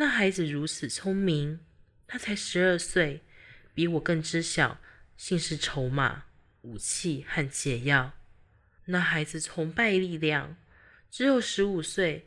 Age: 20-39